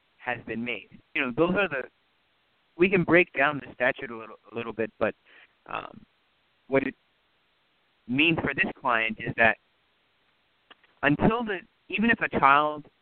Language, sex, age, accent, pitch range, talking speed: English, male, 30-49, American, 115-145 Hz, 160 wpm